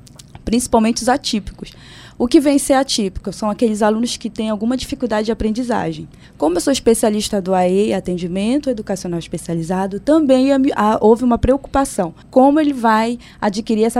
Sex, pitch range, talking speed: female, 195-245 Hz, 160 wpm